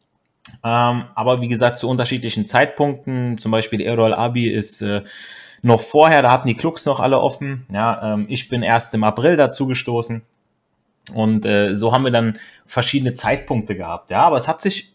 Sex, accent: male, German